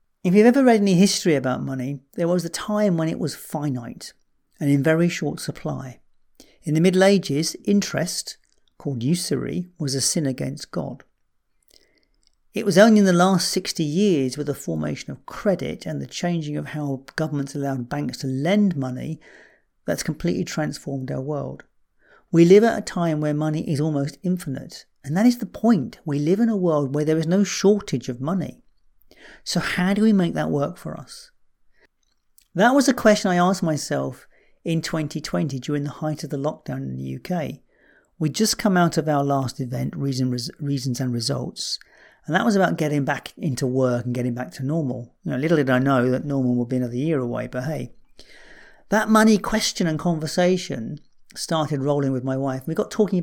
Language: English